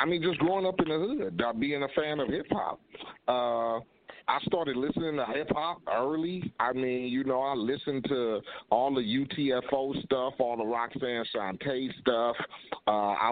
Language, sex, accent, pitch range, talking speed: English, male, American, 110-140 Hz, 165 wpm